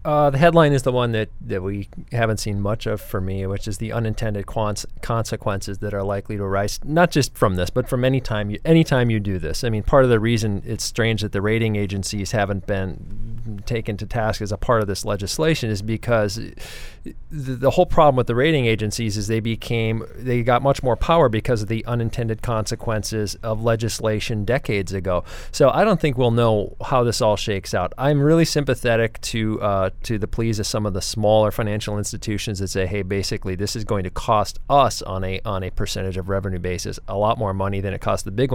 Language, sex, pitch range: English, male, 100-120 Hz